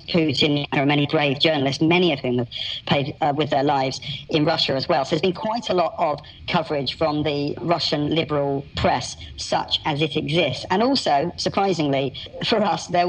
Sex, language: male, English